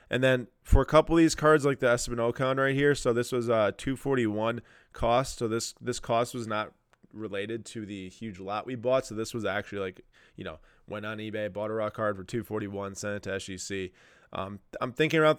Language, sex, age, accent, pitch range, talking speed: English, male, 20-39, American, 105-130 Hz, 220 wpm